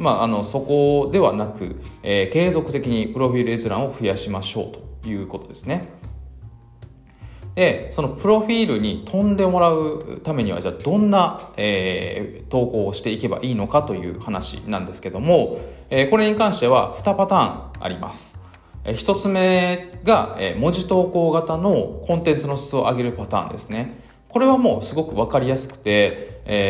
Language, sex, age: Japanese, male, 20-39